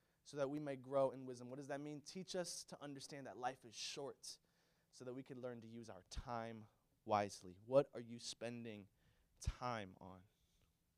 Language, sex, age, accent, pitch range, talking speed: English, male, 20-39, American, 140-235 Hz, 190 wpm